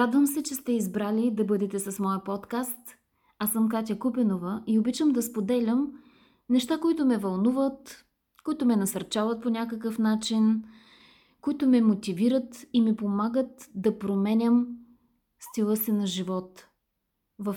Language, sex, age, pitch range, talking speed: Bulgarian, female, 20-39, 205-255 Hz, 140 wpm